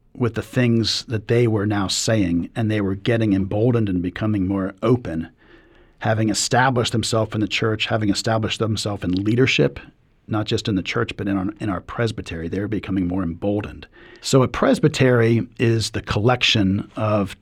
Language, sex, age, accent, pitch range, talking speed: English, male, 50-69, American, 95-115 Hz, 170 wpm